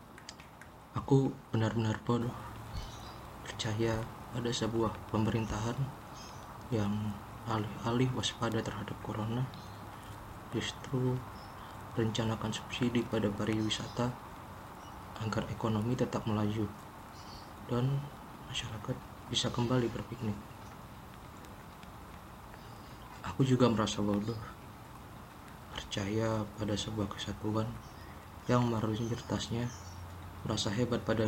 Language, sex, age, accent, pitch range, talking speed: Indonesian, male, 20-39, native, 105-115 Hz, 75 wpm